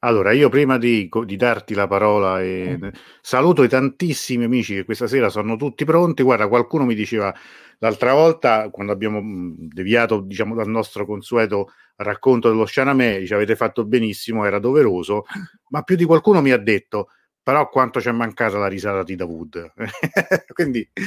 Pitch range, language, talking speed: 105-135 Hz, Italian, 165 wpm